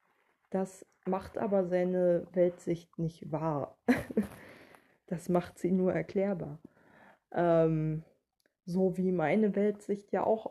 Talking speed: 110 wpm